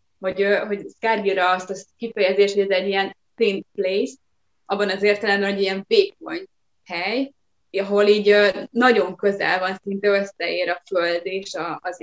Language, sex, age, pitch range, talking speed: Hungarian, female, 20-39, 190-210 Hz, 150 wpm